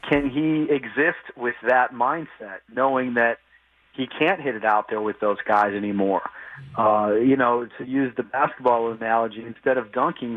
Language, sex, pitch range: English, male, 115-140 Hz